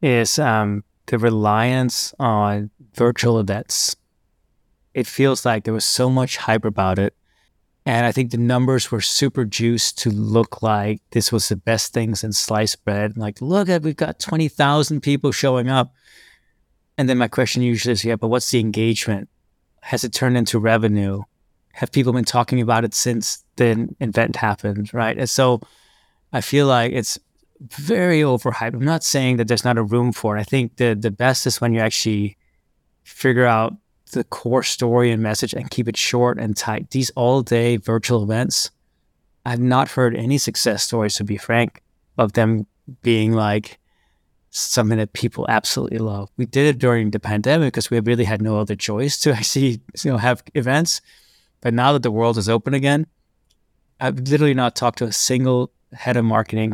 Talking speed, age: 180 wpm, 20-39